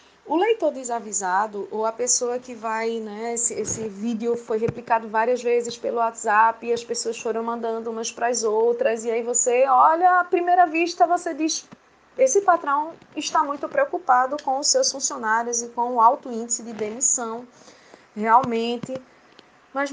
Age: 20-39